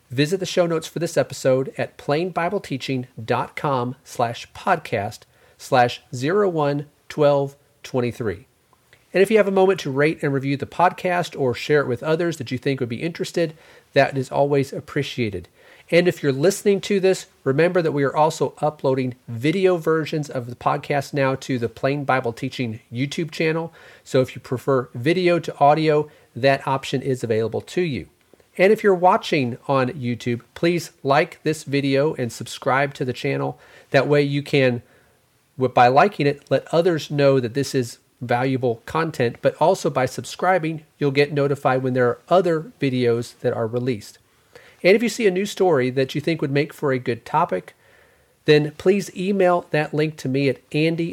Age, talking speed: 40-59, 180 wpm